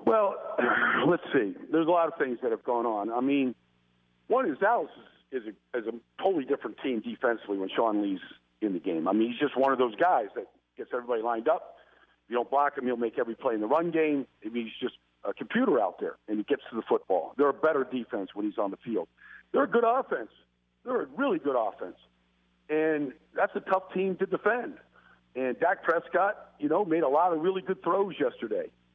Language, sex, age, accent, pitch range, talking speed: English, male, 50-69, American, 120-165 Hz, 225 wpm